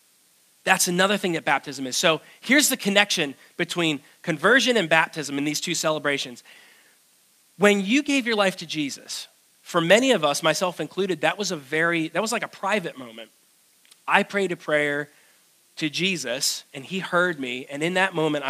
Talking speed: 180 wpm